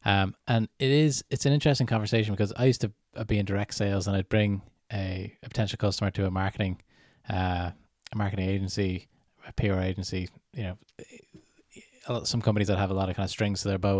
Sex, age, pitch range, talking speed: male, 20-39, 100-115 Hz, 215 wpm